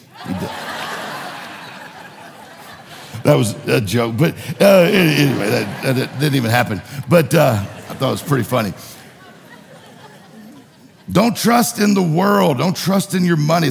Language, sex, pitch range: English, male, 130-170 Hz